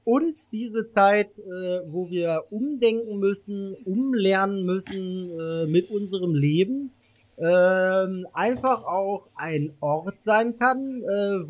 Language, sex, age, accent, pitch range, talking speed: German, male, 30-49, German, 155-205 Hz, 115 wpm